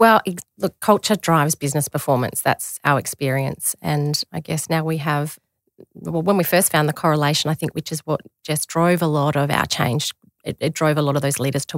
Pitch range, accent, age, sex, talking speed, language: 145-165 Hz, Australian, 30-49, female, 220 wpm, English